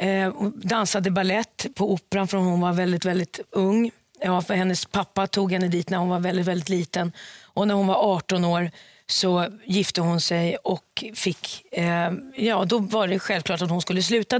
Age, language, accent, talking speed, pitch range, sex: 30-49, English, Swedish, 190 wpm, 180-215 Hz, female